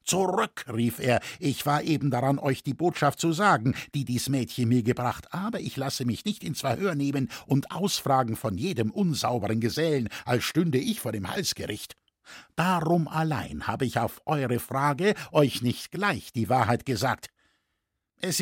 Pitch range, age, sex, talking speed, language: 120-170 Hz, 60-79, male, 165 wpm, German